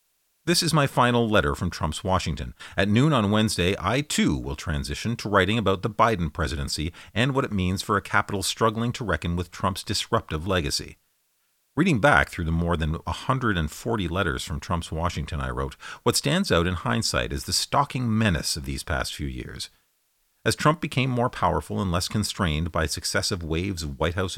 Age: 40-59